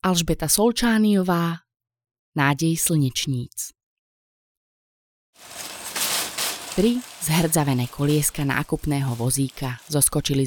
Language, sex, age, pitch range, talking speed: Slovak, female, 20-39, 130-160 Hz, 55 wpm